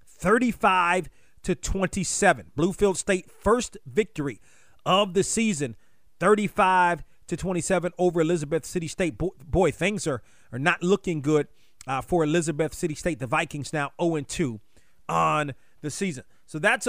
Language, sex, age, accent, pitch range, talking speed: English, male, 30-49, American, 155-195 Hz, 130 wpm